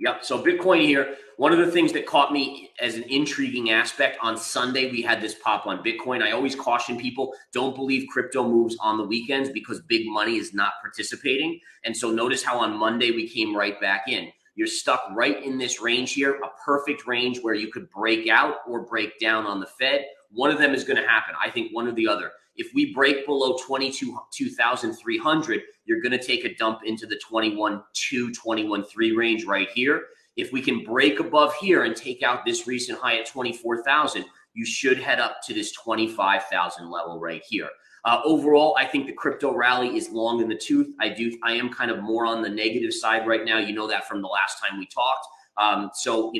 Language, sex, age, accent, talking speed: English, male, 30-49, American, 220 wpm